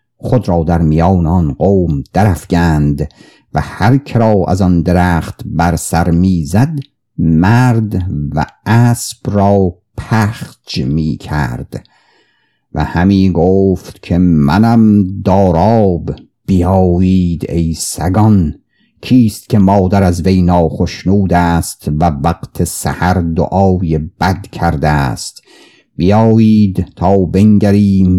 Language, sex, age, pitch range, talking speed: Persian, male, 50-69, 80-105 Hz, 100 wpm